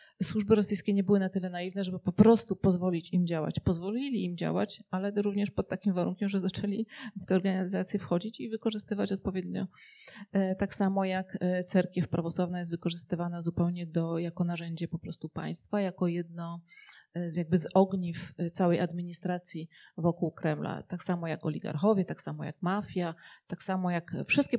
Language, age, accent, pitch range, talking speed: Polish, 30-49, native, 175-205 Hz, 150 wpm